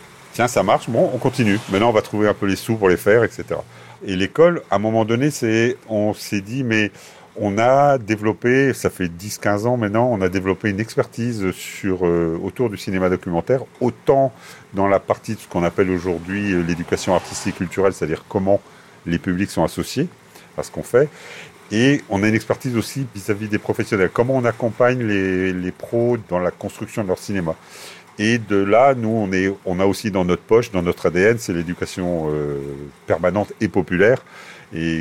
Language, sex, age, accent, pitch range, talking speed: French, male, 40-59, French, 90-115 Hz, 195 wpm